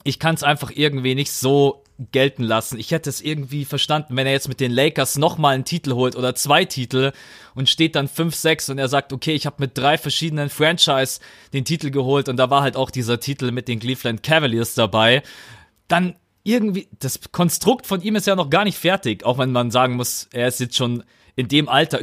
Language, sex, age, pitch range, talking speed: German, male, 30-49, 125-155 Hz, 220 wpm